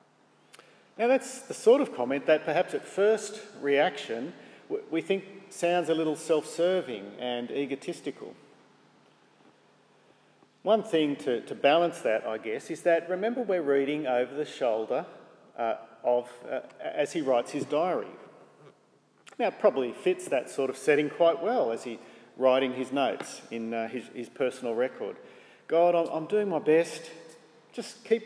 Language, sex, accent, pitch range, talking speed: English, male, Australian, 140-195 Hz, 150 wpm